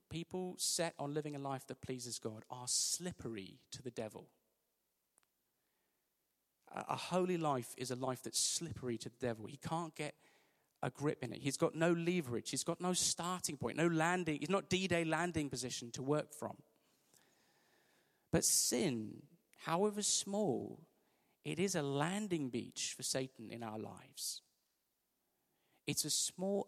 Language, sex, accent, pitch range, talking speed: English, male, British, 125-180 Hz, 155 wpm